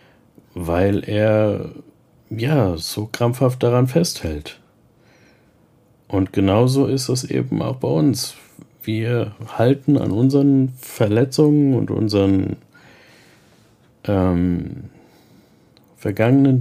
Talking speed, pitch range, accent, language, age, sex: 85 wpm, 100-130 Hz, German, German, 50-69, male